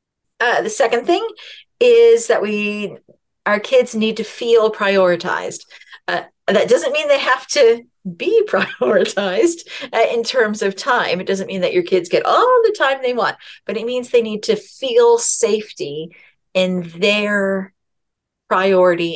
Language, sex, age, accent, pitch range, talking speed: English, female, 40-59, American, 170-240 Hz, 155 wpm